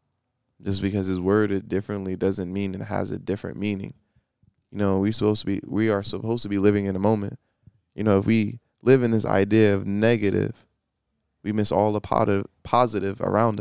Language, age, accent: English, 20-39, American